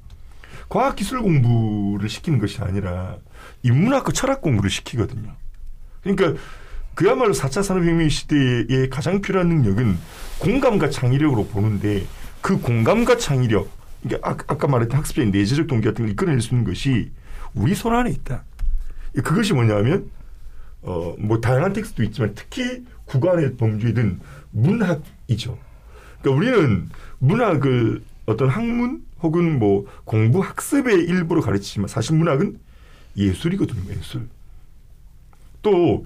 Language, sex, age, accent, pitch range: Korean, male, 40-59, native, 100-160 Hz